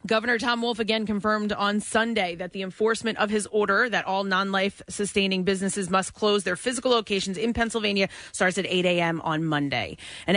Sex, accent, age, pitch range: female, American, 30-49, 175-200 Hz